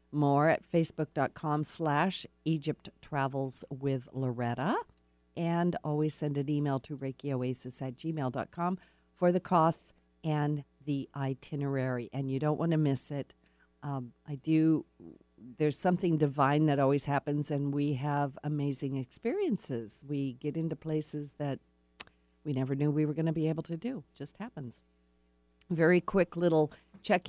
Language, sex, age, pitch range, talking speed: English, female, 50-69, 135-165 Hz, 145 wpm